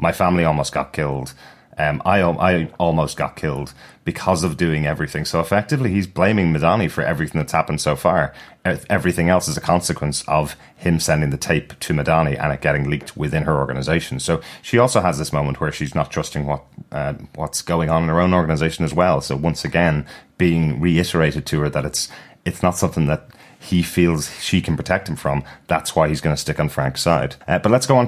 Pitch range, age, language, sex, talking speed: 75-90 Hz, 30-49, English, male, 215 wpm